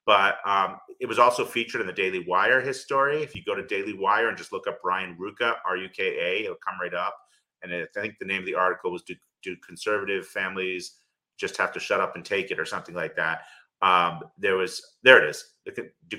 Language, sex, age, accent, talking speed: English, male, 30-49, American, 225 wpm